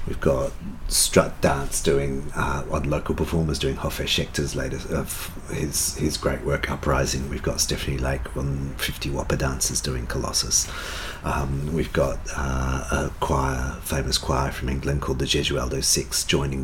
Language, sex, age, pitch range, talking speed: English, male, 40-59, 65-75 Hz, 170 wpm